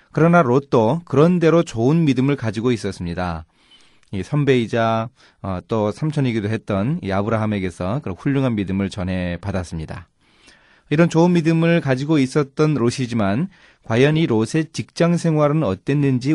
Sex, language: male, Korean